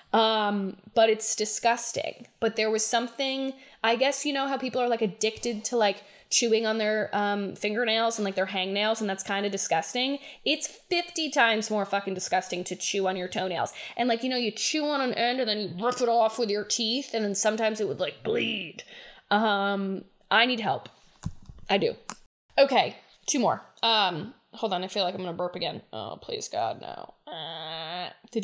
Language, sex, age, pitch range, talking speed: English, female, 10-29, 200-255 Hz, 200 wpm